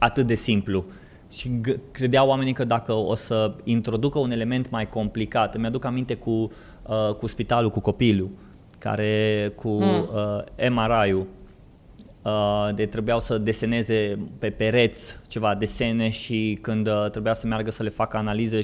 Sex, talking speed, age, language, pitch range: male, 150 wpm, 20-39, Romanian, 105-125 Hz